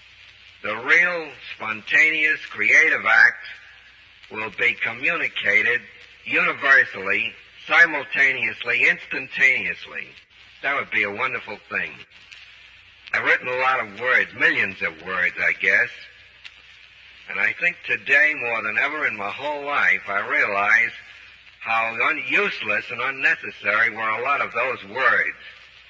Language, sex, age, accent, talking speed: English, male, 60-79, American, 120 wpm